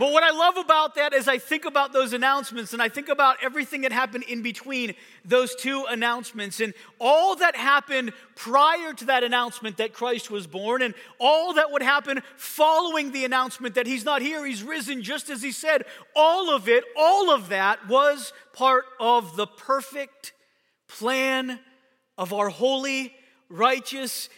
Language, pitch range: English, 240-280 Hz